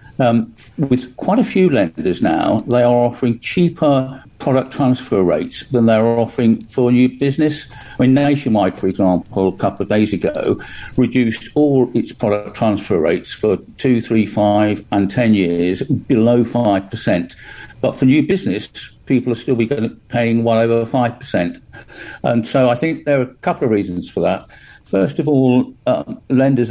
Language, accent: English, British